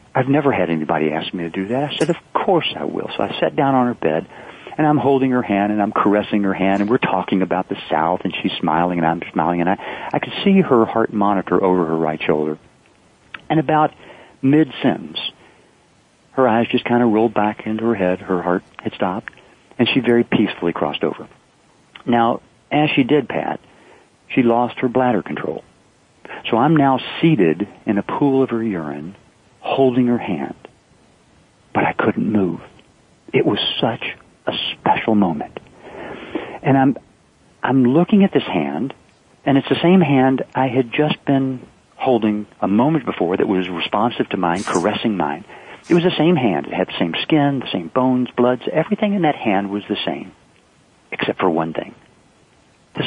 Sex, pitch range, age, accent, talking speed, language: male, 95-135 Hz, 50-69, American, 190 wpm, English